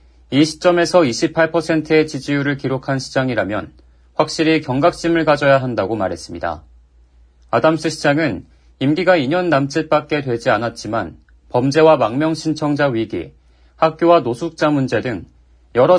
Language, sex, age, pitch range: Korean, male, 40-59, 110-160 Hz